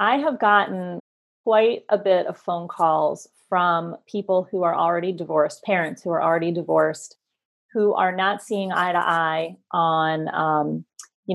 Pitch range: 180-225 Hz